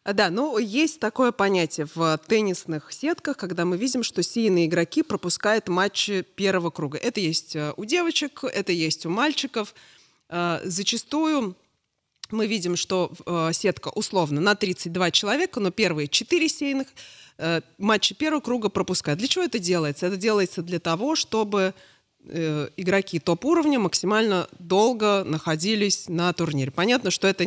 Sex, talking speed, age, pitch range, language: female, 155 wpm, 30-49, 170-220 Hz, Russian